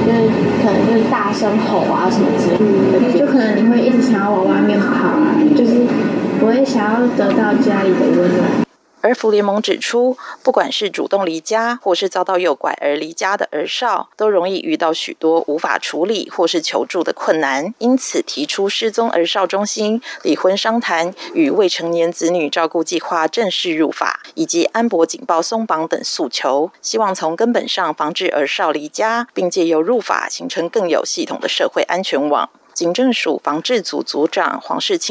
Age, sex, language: 20-39, female, German